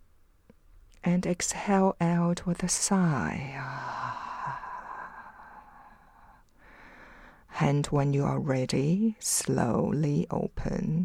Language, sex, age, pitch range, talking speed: English, female, 50-69, 135-180 Hz, 70 wpm